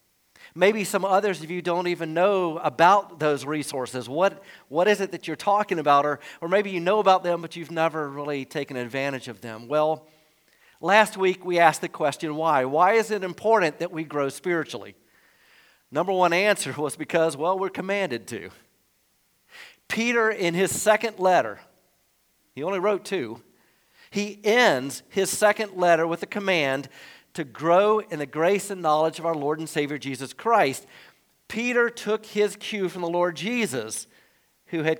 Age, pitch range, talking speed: 50-69, 155-205 Hz, 170 wpm